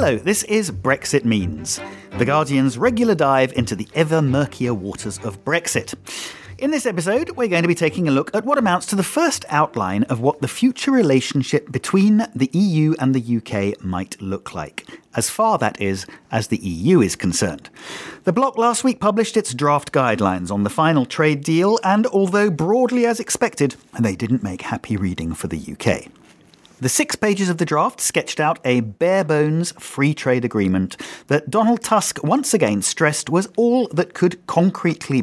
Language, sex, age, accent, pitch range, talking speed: English, male, 40-59, British, 115-185 Hz, 180 wpm